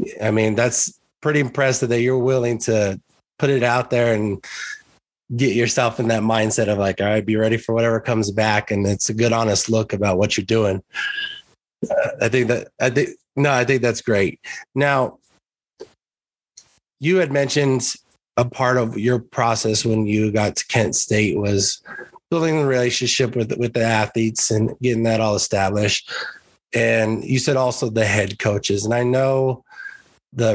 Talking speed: 175 wpm